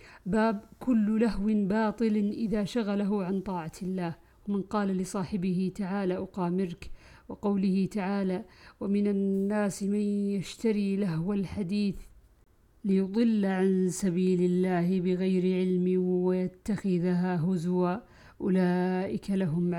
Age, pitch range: 50-69, 185-205 Hz